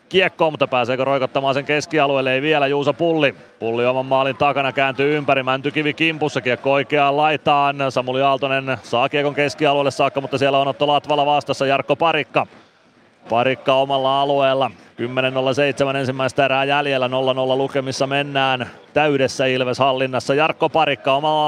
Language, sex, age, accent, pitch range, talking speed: Finnish, male, 30-49, native, 135-150 Hz, 135 wpm